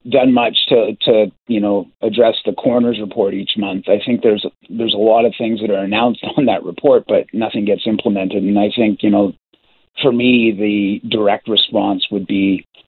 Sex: male